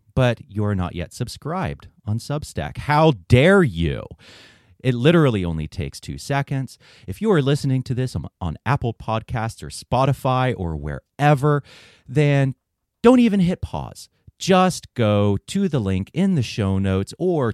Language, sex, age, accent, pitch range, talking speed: English, male, 30-49, American, 90-135 Hz, 150 wpm